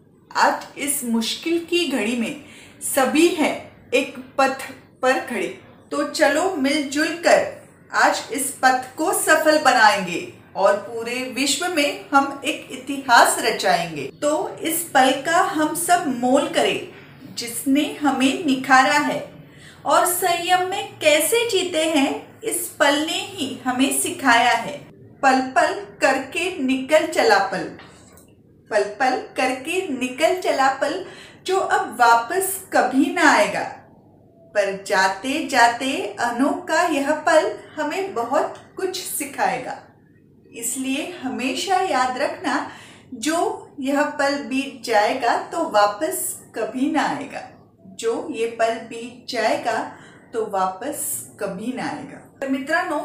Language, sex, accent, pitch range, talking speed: Marathi, female, native, 245-320 Hz, 120 wpm